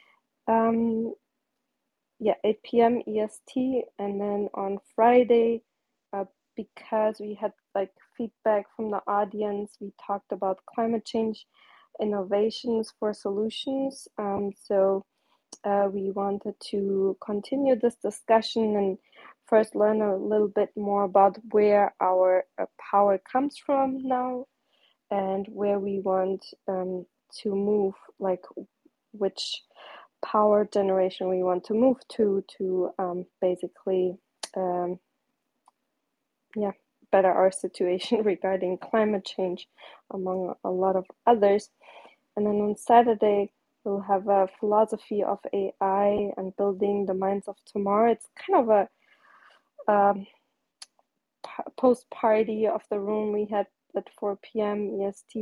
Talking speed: 120 wpm